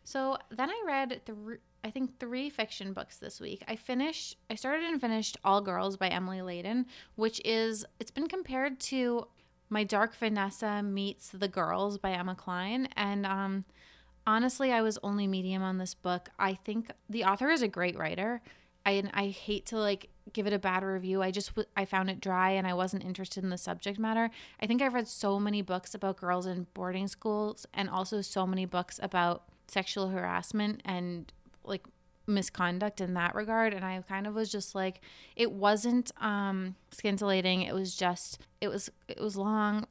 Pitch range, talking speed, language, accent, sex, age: 185-220 Hz, 185 wpm, English, American, female, 20-39